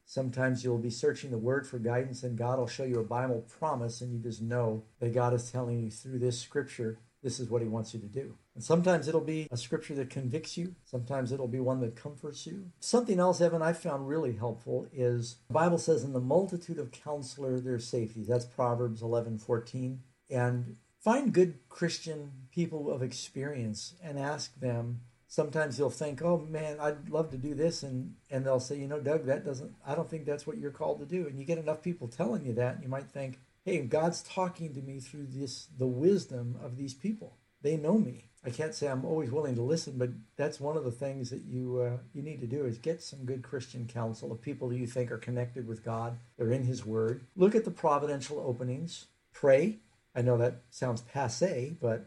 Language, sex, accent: English, male, American